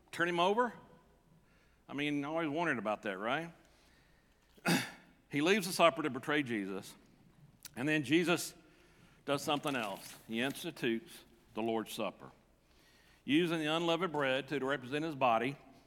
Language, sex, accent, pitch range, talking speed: English, male, American, 130-175 Hz, 140 wpm